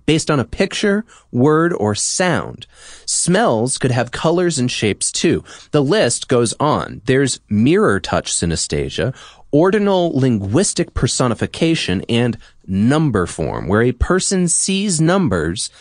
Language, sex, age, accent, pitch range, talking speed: English, male, 30-49, American, 115-170 Hz, 120 wpm